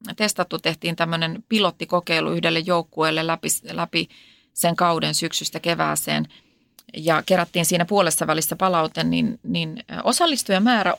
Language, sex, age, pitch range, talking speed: Finnish, female, 30-49, 160-195 Hz, 115 wpm